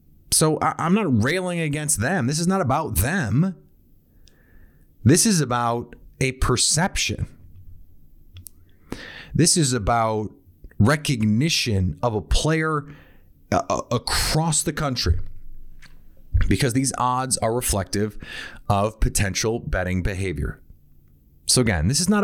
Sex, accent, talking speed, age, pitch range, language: male, American, 110 wpm, 30-49, 90-135 Hz, English